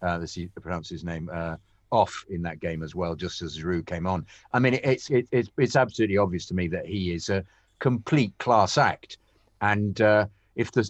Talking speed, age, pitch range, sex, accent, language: 205 wpm, 50-69, 90-105 Hz, male, British, English